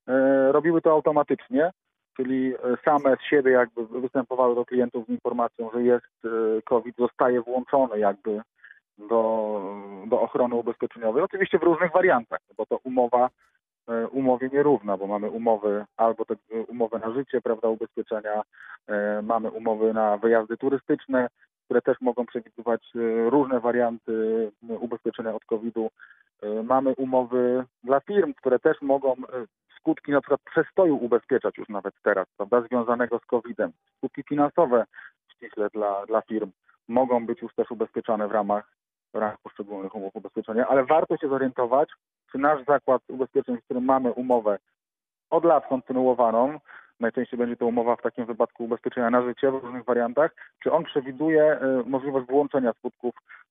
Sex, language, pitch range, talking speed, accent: male, Polish, 115-135 Hz, 140 wpm, native